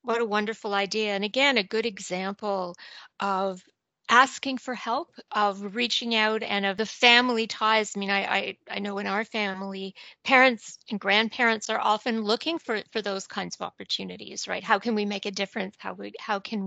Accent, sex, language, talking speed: American, female, English, 190 wpm